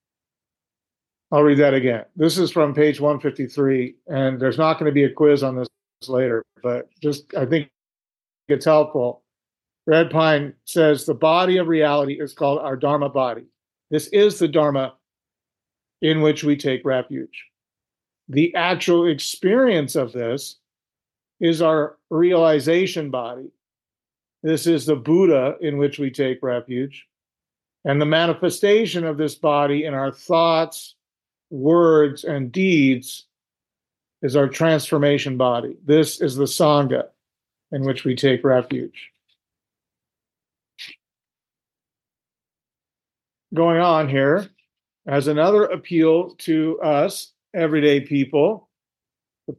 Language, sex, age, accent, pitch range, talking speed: English, male, 50-69, American, 135-165 Hz, 120 wpm